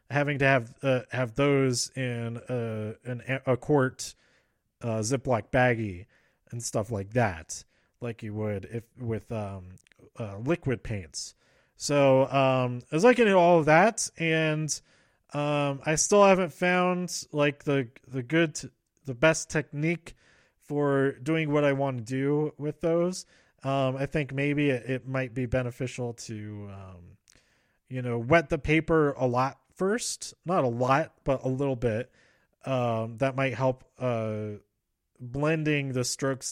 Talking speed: 150 wpm